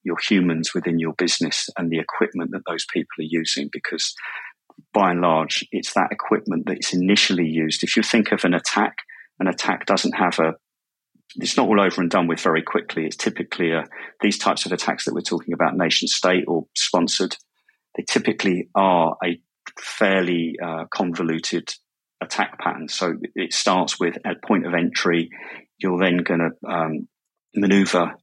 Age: 30-49